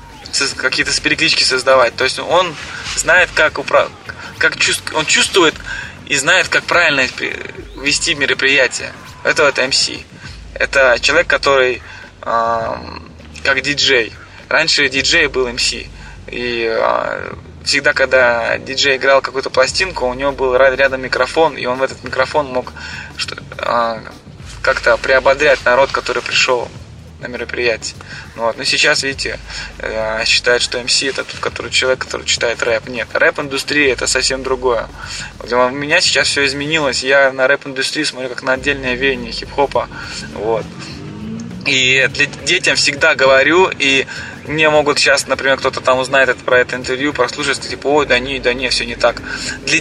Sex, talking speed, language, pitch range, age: male, 145 wpm, Russian, 125-140 Hz, 20-39